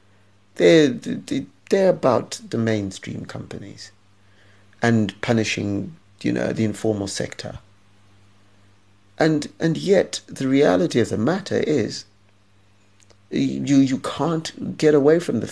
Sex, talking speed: male, 110 wpm